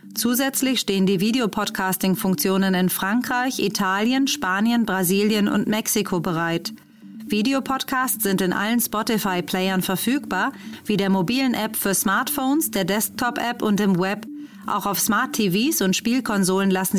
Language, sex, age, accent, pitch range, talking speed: German, female, 30-49, German, 190-225 Hz, 125 wpm